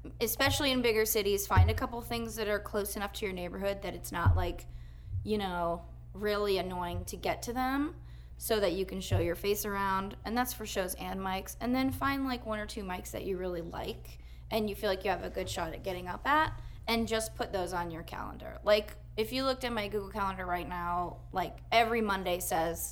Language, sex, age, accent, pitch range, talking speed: English, female, 20-39, American, 175-220 Hz, 230 wpm